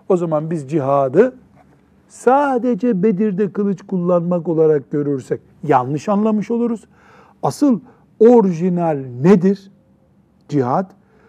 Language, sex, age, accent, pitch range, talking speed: Turkish, male, 60-79, native, 160-215 Hz, 90 wpm